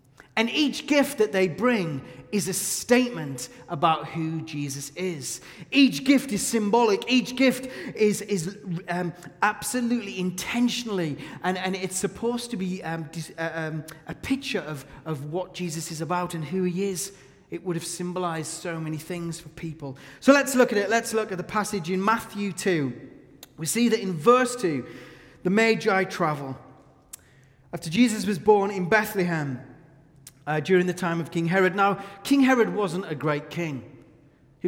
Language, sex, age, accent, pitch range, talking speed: English, male, 30-49, British, 155-205 Hz, 165 wpm